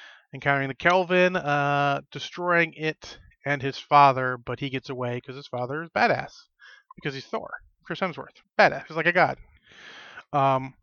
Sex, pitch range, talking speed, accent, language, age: male, 130-160 Hz, 160 wpm, American, English, 30-49